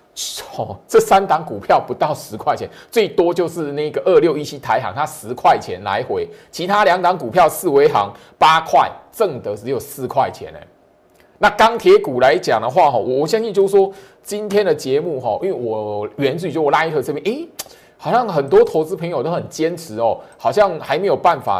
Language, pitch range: Chinese, 145-225 Hz